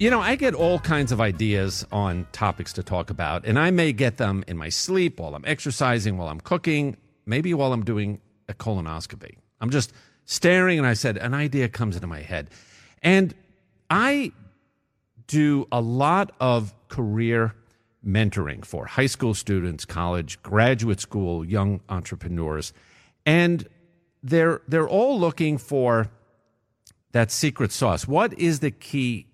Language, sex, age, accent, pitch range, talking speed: English, male, 50-69, American, 100-145 Hz, 155 wpm